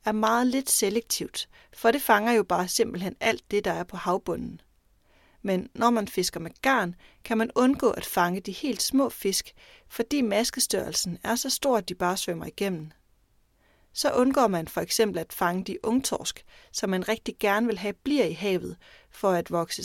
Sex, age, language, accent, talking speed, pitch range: female, 30-49, Danish, native, 185 wpm, 175-230 Hz